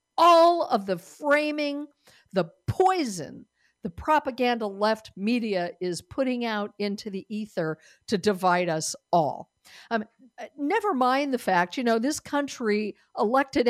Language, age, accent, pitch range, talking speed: English, 50-69, American, 190-275 Hz, 130 wpm